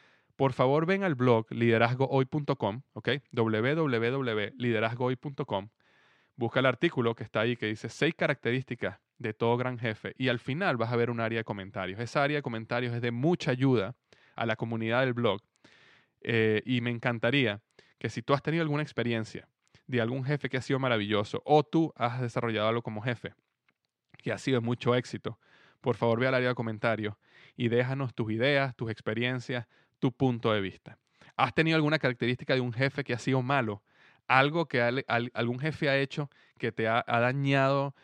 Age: 20-39